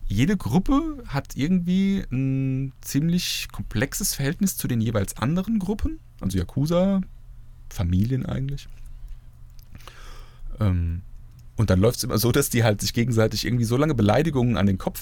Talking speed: 140 wpm